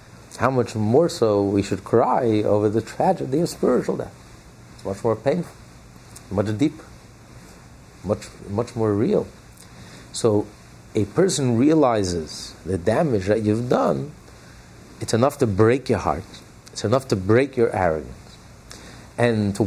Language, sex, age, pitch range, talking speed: English, male, 50-69, 100-130 Hz, 140 wpm